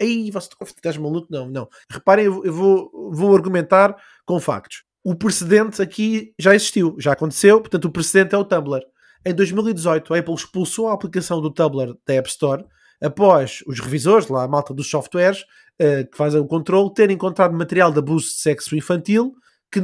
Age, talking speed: 20-39, 180 wpm